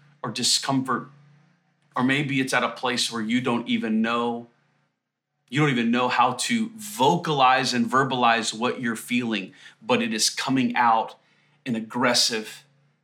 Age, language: 30-49, English